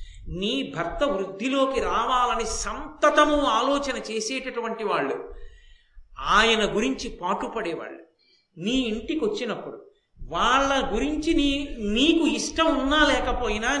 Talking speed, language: 90 wpm, Telugu